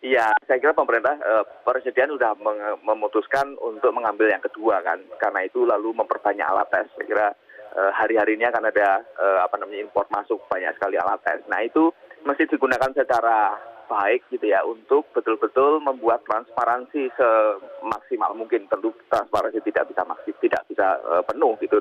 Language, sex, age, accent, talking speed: Indonesian, male, 30-49, native, 160 wpm